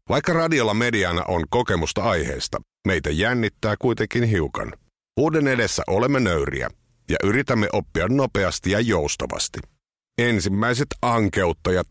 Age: 50-69